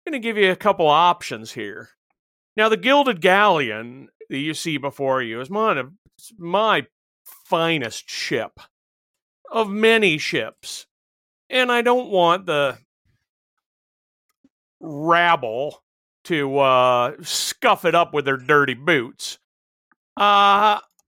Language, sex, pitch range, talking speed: English, male, 130-215 Hz, 120 wpm